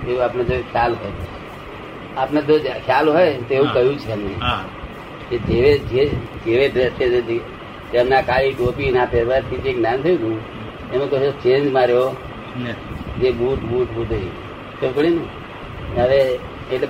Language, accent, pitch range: Gujarati, native, 120-150 Hz